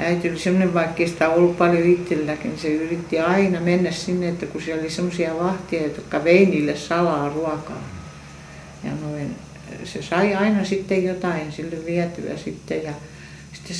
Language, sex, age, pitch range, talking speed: Finnish, female, 60-79, 160-195 Hz, 140 wpm